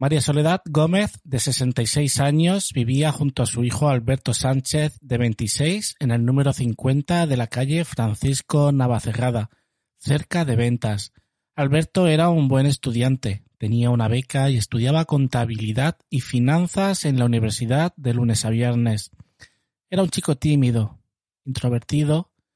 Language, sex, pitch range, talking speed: Spanish, male, 120-150 Hz, 140 wpm